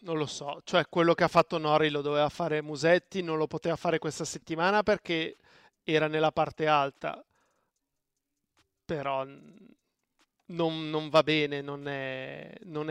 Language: Italian